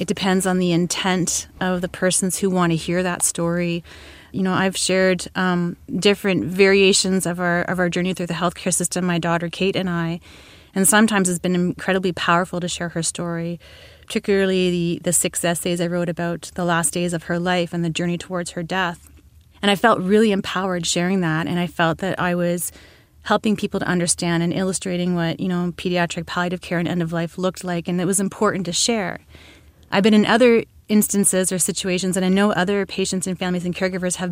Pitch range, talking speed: 175-190 Hz, 210 wpm